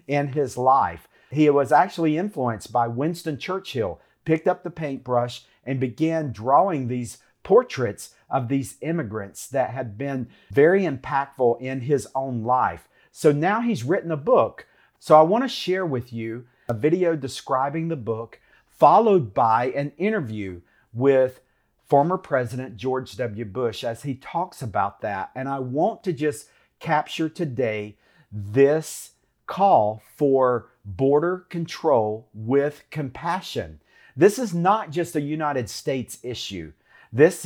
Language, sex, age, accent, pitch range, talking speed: English, male, 50-69, American, 125-155 Hz, 140 wpm